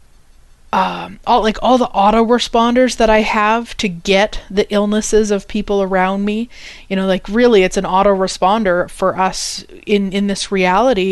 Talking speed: 160 wpm